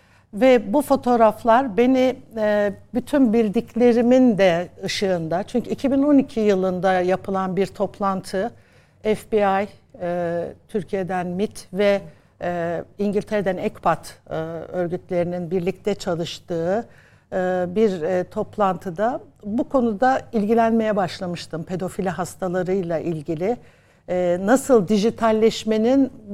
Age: 60-79